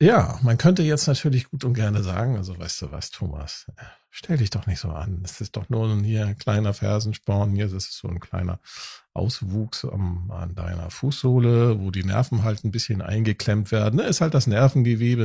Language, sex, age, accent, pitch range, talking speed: German, male, 50-69, German, 100-130 Hz, 205 wpm